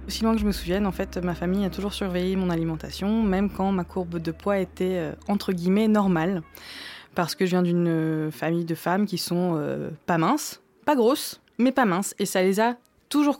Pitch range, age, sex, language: 175-220 Hz, 20-39, female, French